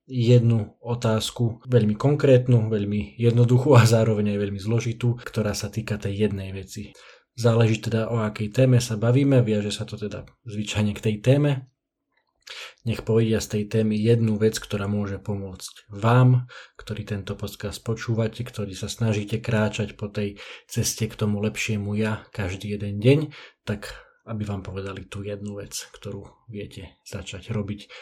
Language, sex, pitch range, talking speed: Slovak, male, 105-120 Hz, 155 wpm